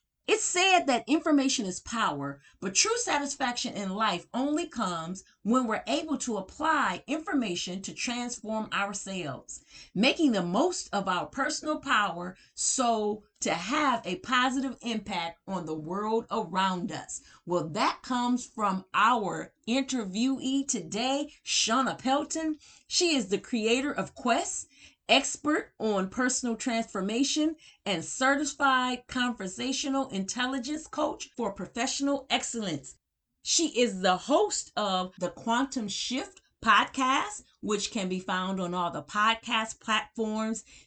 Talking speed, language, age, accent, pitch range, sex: 125 wpm, English, 40-59, American, 195-265 Hz, female